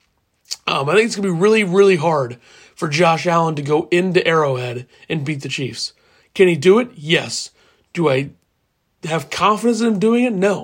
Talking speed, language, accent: 195 wpm, English, American